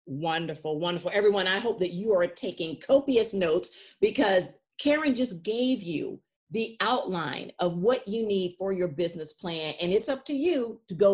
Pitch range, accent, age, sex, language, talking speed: 170-240 Hz, American, 40-59, female, English, 180 wpm